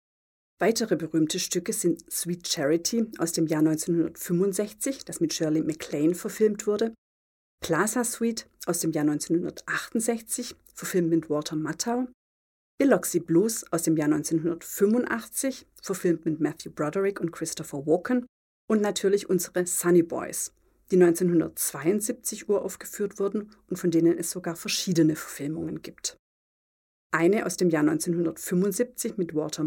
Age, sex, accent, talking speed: 40-59, female, German, 125 wpm